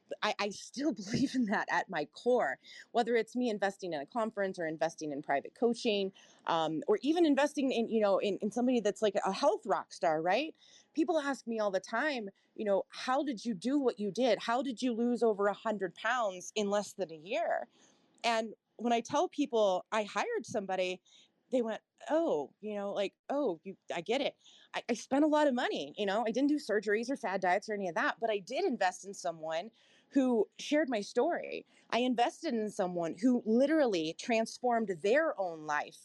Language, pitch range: English, 200-260 Hz